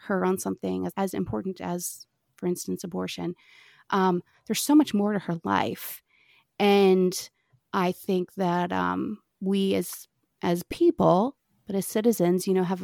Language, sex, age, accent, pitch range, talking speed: English, female, 30-49, American, 170-200 Hz, 150 wpm